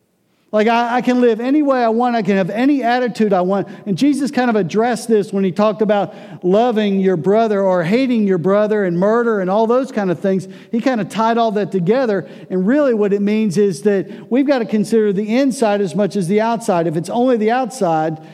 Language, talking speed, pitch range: English, 230 wpm, 160-215 Hz